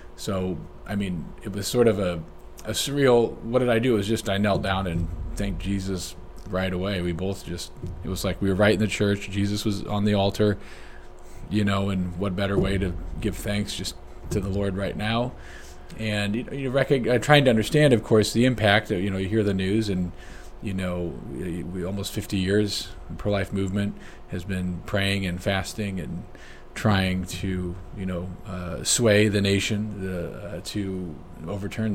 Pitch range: 95-105 Hz